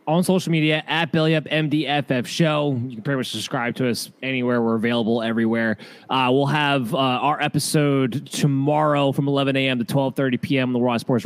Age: 20-39